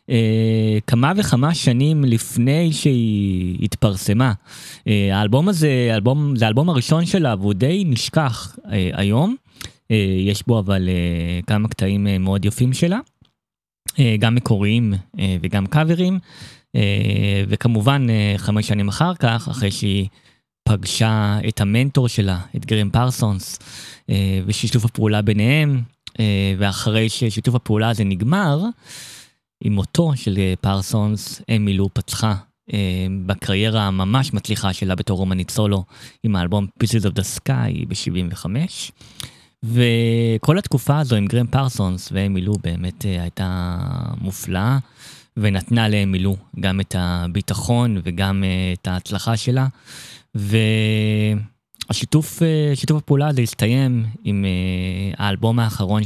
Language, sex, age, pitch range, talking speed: Hebrew, male, 20-39, 100-125 Hz, 115 wpm